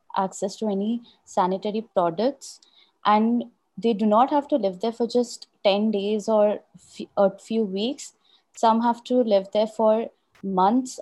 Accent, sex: Indian, female